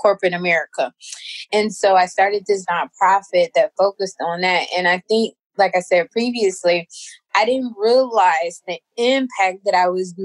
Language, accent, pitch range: English, American, 175-225 Hz